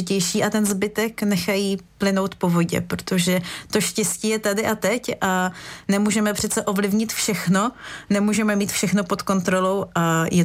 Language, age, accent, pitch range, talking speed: Czech, 30-49, native, 185-215 Hz, 150 wpm